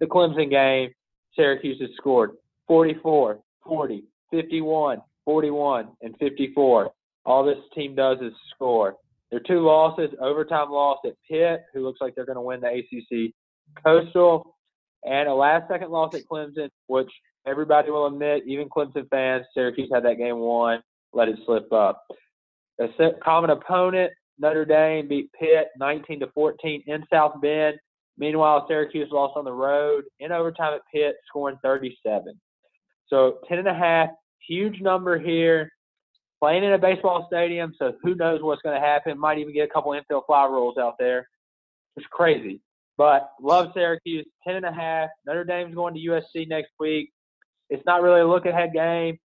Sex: male